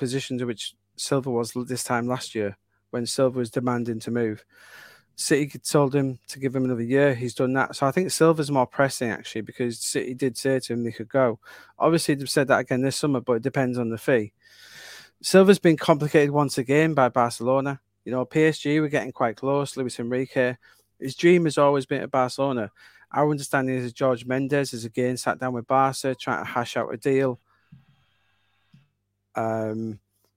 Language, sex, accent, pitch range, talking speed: English, male, British, 120-145 Hz, 190 wpm